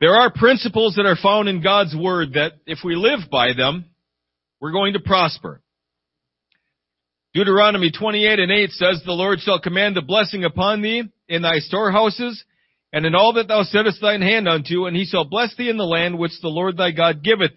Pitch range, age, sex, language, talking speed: 165-215 Hz, 40-59, male, English, 200 wpm